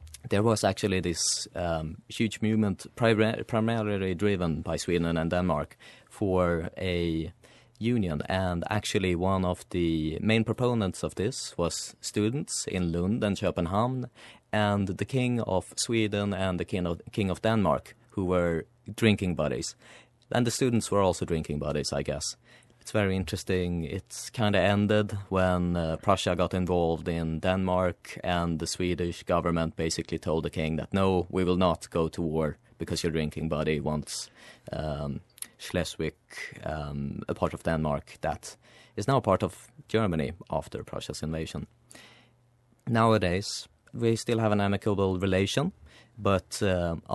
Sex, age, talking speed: male, 30-49, 150 wpm